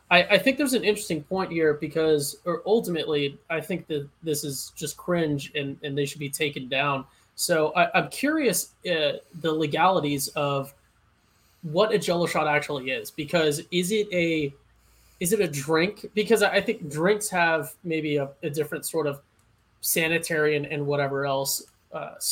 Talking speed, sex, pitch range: 165 wpm, male, 140-165 Hz